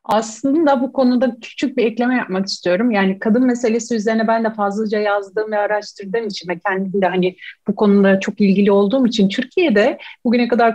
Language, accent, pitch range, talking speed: Turkish, native, 200-245 Hz, 180 wpm